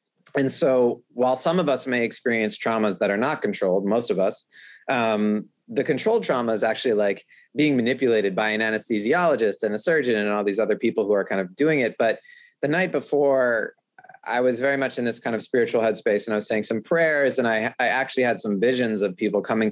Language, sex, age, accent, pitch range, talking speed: English, male, 30-49, American, 105-130 Hz, 220 wpm